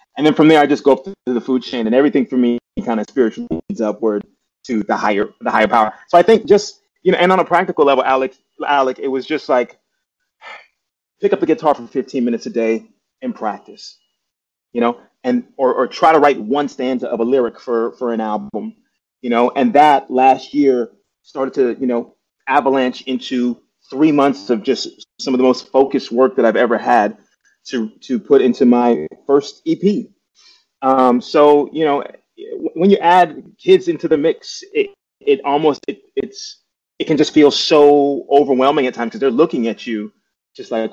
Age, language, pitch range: 30-49, English, 125-195 Hz